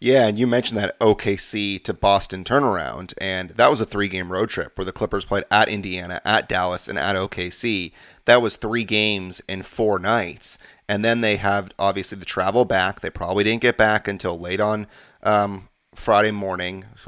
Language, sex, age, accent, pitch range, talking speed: English, male, 30-49, American, 95-120 Hz, 185 wpm